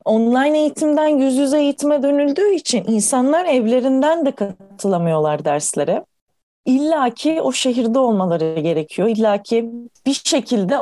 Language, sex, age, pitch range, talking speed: Turkish, female, 30-49, 185-265 Hz, 120 wpm